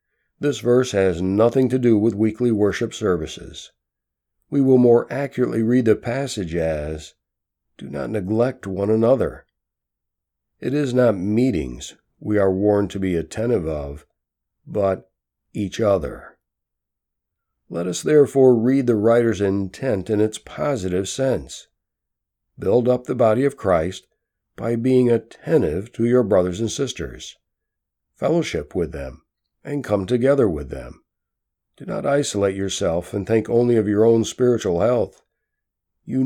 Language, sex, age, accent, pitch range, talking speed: English, male, 60-79, American, 95-125 Hz, 135 wpm